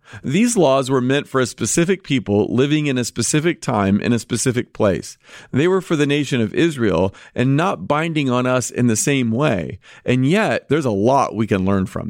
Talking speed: 210 wpm